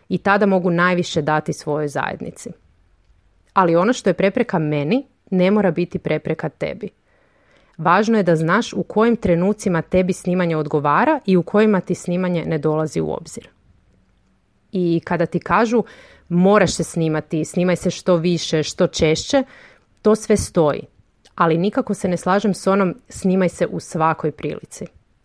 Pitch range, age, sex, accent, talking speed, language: 160-195 Hz, 30-49, female, native, 155 wpm, Croatian